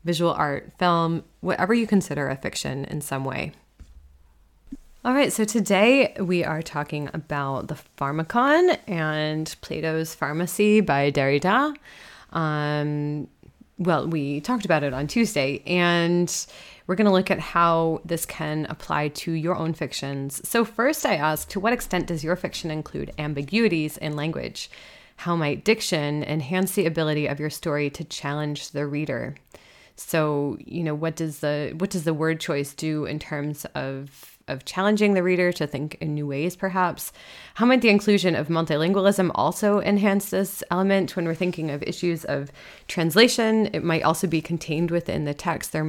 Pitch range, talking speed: 150-185 Hz, 165 wpm